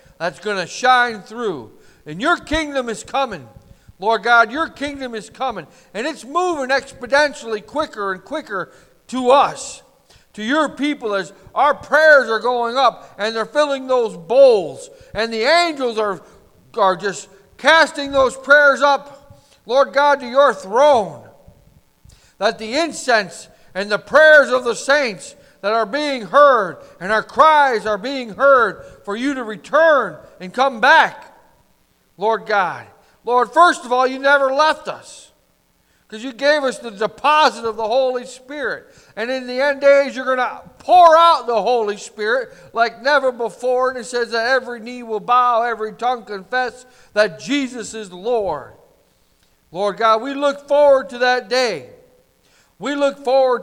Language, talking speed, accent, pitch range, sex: English, 160 wpm, American, 220-285 Hz, male